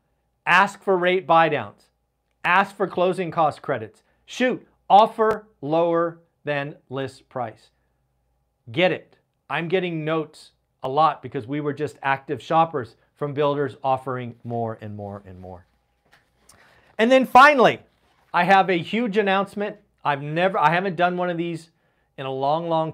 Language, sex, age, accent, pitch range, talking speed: English, male, 40-59, American, 145-190 Hz, 150 wpm